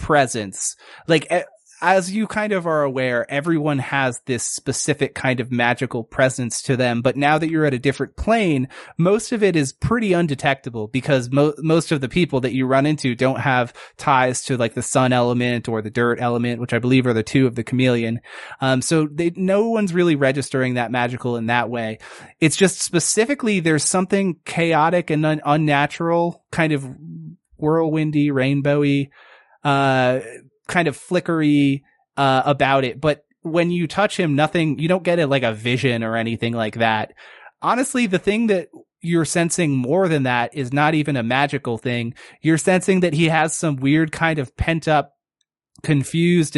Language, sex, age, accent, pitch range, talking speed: English, male, 30-49, American, 130-165 Hz, 175 wpm